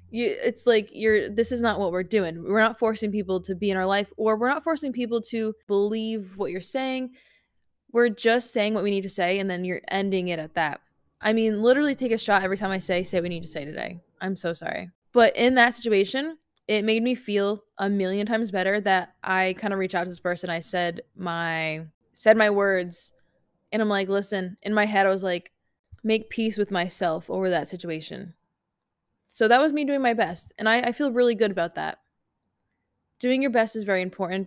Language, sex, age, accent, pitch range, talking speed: English, female, 20-39, American, 180-230 Hz, 225 wpm